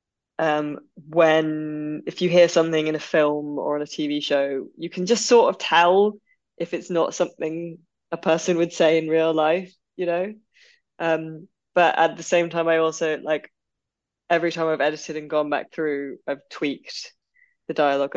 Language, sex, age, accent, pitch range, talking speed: English, female, 20-39, British, 150-175 Hz, 180 wpm